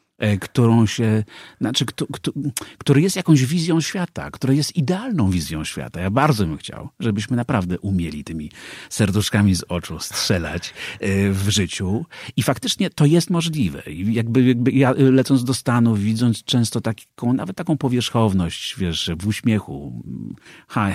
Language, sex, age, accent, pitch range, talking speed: Polish, male, 50-69, native, 95-125 Hz, 145 wpm